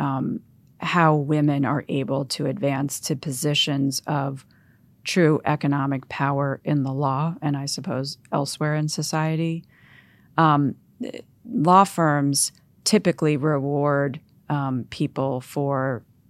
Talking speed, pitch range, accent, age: 110 wpm, 140-155 Hz, American, 40-59